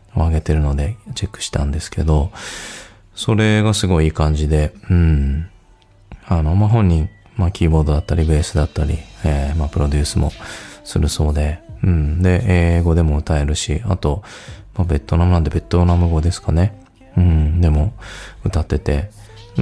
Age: 20-39